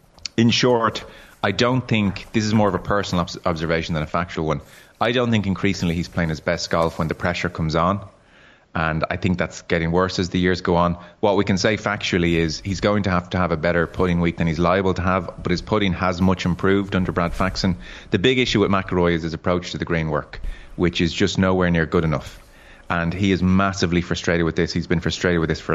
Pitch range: 85-95 Hz